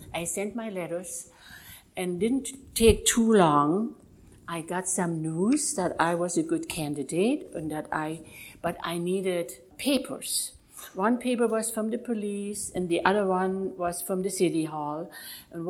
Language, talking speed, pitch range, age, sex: English, 160 wpm, 165-215 Hz, 60-79, female